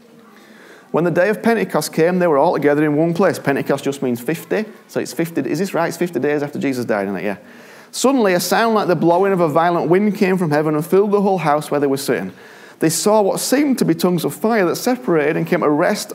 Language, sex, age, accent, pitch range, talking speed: English, male, 30-49, British, 150-220 Hz, 255 wpm